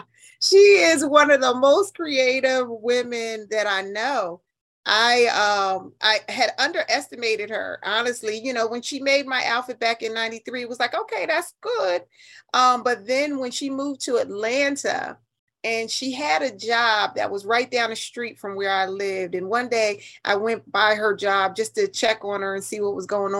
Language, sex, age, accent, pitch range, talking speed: English, female, 30-49, American, 225-330 Hz, 190 wpm